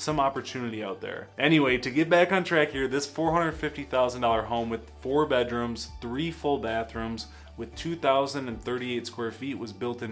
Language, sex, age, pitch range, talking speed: English, male, 20-39, 115-140 Hz, 160 wpm